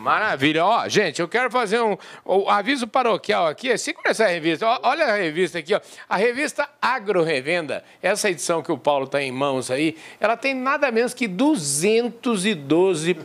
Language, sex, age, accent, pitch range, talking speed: Portuguese, male, 50-69, Brazilian, 170-230 Hz, 165 wpm